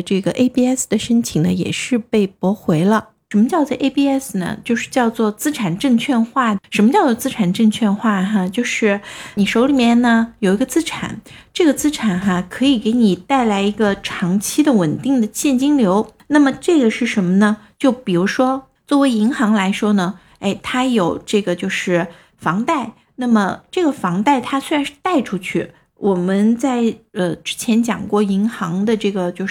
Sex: female